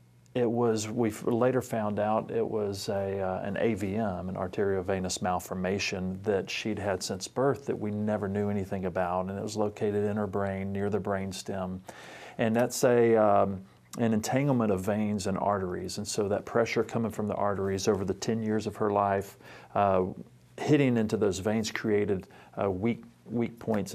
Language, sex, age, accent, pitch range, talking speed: English, male, 40-59, American, 95-110 Hz, 180 wpm